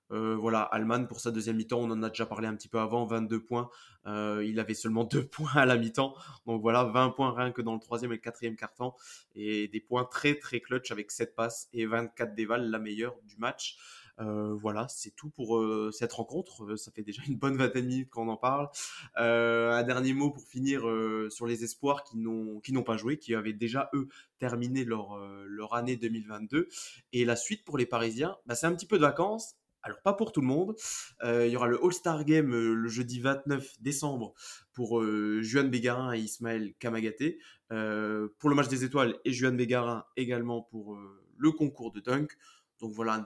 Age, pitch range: 20-39, 110-130 Hz